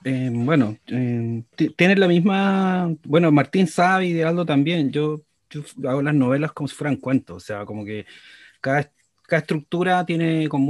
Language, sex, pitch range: Spanish, male, 115-145 Hz